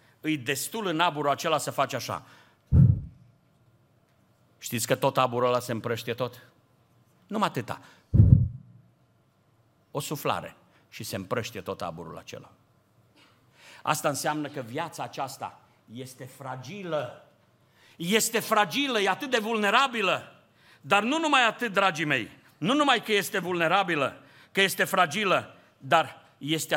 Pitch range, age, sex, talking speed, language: 130-195 Hz, 50-69, male, 125 wpm, Romanian